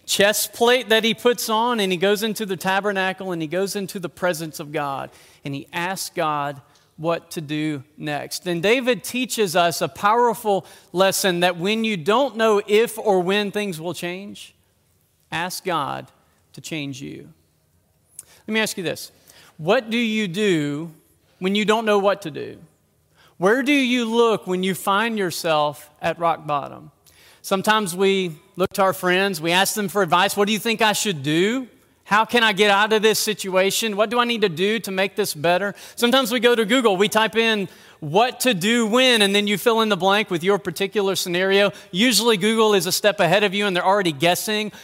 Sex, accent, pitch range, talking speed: male, American, 175-215 Hz, 200 wpm